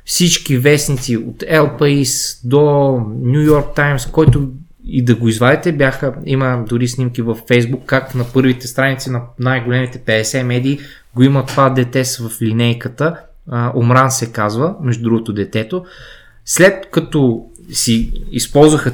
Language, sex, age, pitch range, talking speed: Bulgarian, male, 20-39, 120-140 Hz, 135 wpm